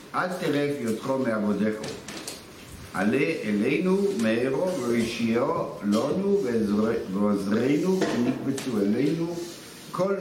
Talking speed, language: 75 wpm, Hebrew